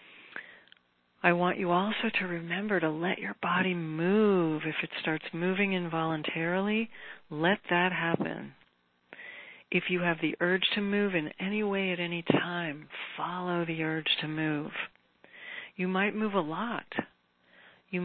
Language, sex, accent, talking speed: English, female, American, 145 wpm